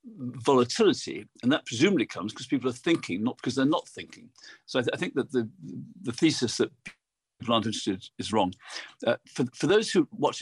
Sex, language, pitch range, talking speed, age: male, English, 100-130 Hz, 205 wpm, 50-69